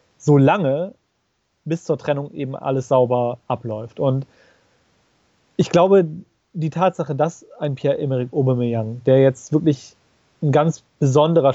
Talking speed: 120 wpm